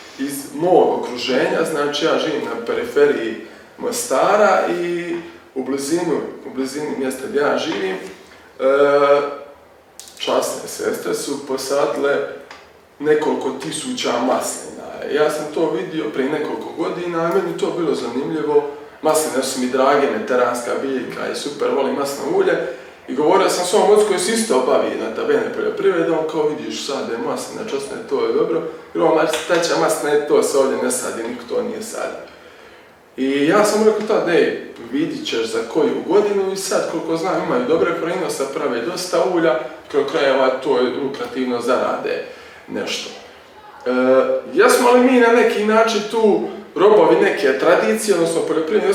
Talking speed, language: 150 wpm, Croatian